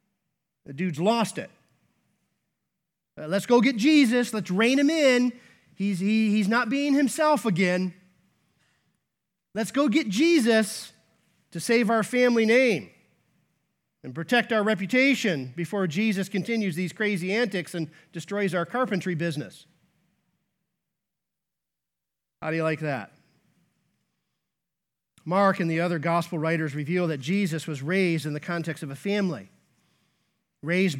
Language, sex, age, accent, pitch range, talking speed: English, male, 40-59, American, 160-215 Hz, 130 wpm